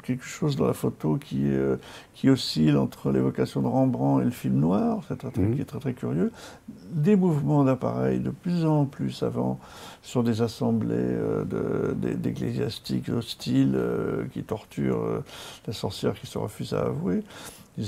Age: 50-69